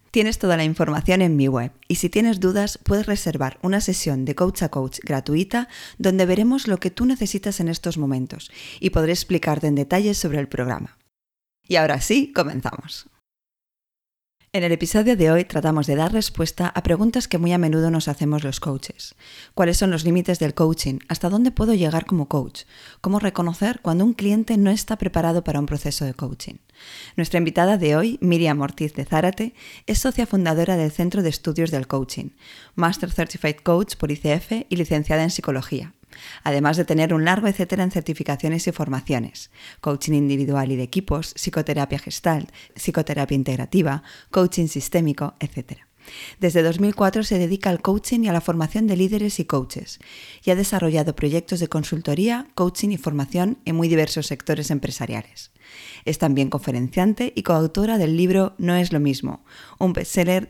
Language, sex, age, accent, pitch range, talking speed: Spanish, female, 20-39, Spanish, 145-185 Hz, 175 wpm